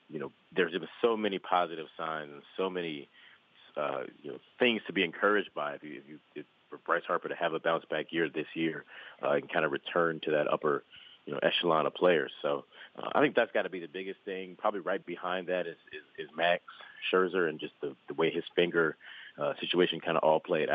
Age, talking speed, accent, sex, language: 30-49, 235 wpm, American, male, English